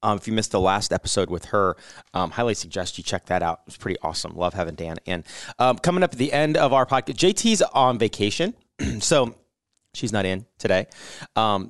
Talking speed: 215 wpm